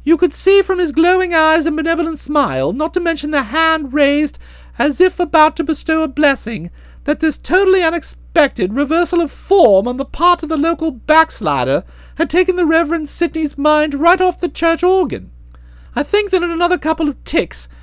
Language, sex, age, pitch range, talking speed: English, male, 40-59, 275-350 Hz, 190 wpm